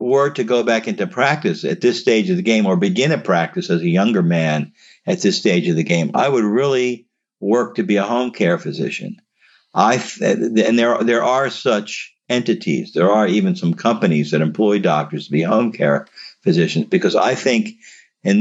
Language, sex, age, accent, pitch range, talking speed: English, male, 50-69, American, 110-150 Hz, 200 wpm